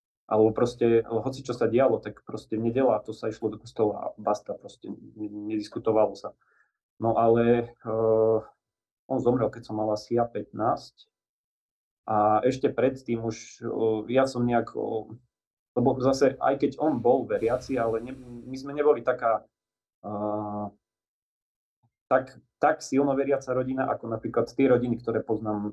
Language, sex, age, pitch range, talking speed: Slovak, male, 30-49, 110-125 Hz, 145 wpm